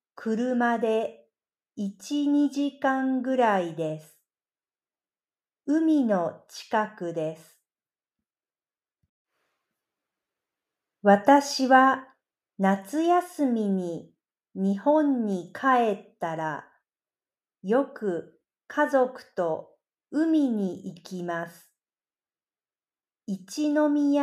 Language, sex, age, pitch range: Japanese, female, 50-69, 185-275 Hz